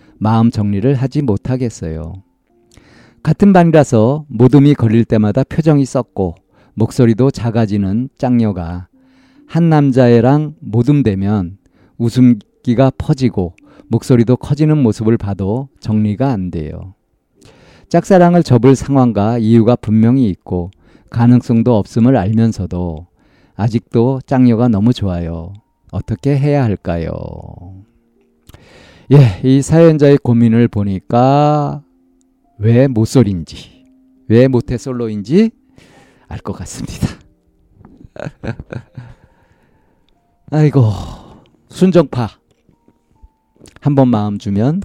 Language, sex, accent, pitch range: Korean, male, native, 100-140 Hz